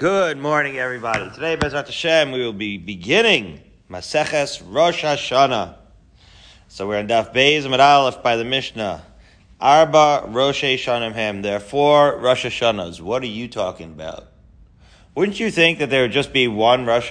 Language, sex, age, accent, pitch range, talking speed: English, male, 40-59, American, 105-130 Hz, 155 wpm